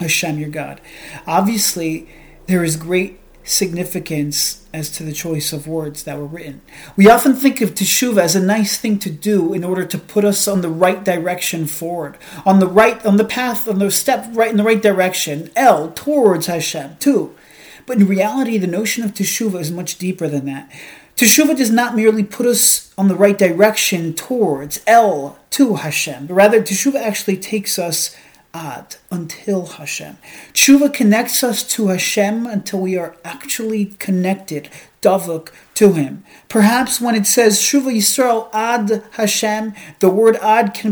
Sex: male